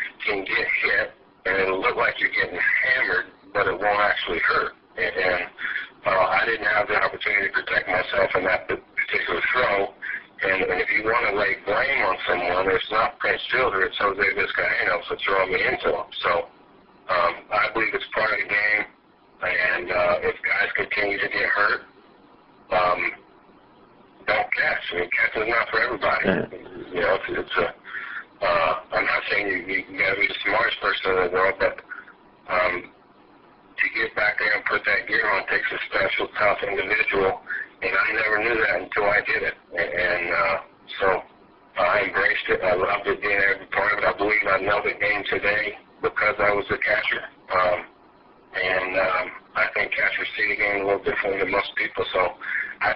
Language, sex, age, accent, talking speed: English, male, 50-69, American, 195 wpm